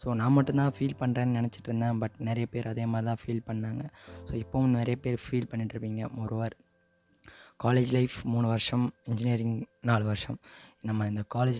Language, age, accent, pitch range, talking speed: Tamil, 20-39, native, 110-125 Hz, 165 wpm